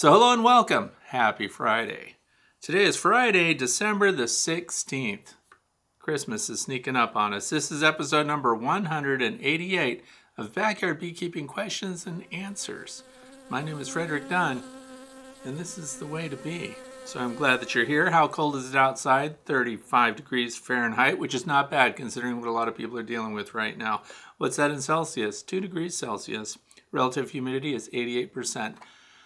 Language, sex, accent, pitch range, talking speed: English, male, American, 125-175 Hz, 165 wpm